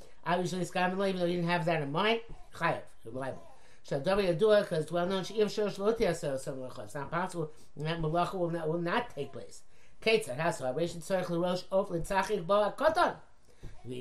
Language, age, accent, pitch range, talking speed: English, 50-69, American, 155-205 Hz, 150 wpm